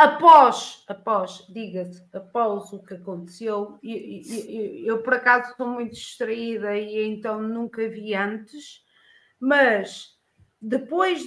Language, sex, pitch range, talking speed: Portuguese, female, 205-245 Hz, 120 wpm